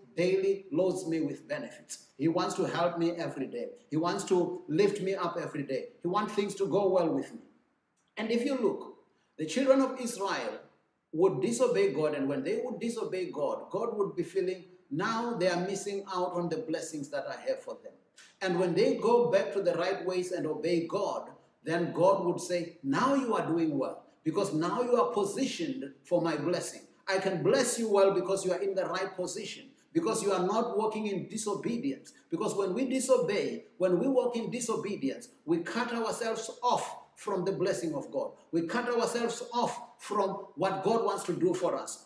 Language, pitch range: English, 175-245 Hz